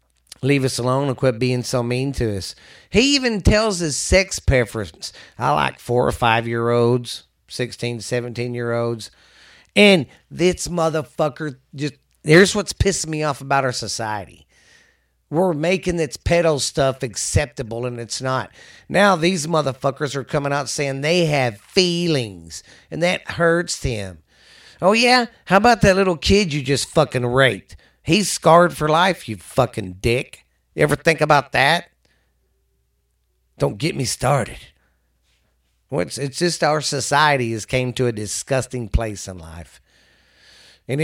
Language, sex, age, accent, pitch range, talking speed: English, male, 50-69, American, 110-155 Hz, 145 wpm